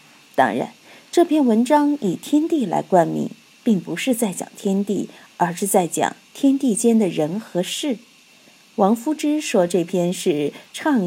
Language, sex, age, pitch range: Chinese, female, 50-69, 185-270 Hz